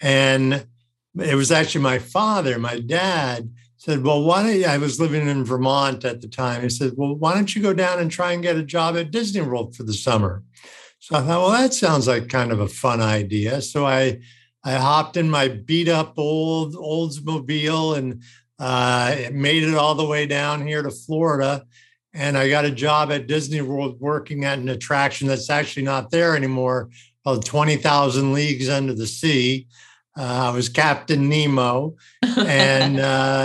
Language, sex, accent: English, male, American